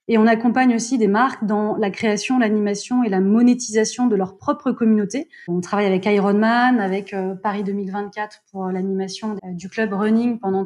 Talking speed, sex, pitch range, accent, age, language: 170 wpm, female, 210-255 Hz, French, 20-39, French